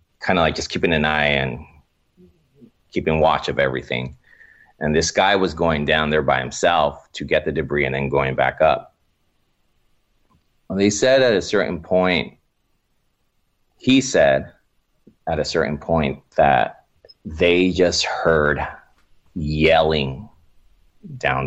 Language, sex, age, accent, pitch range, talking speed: English, male, 30-49, American, 75-95 Hz, 135 wpm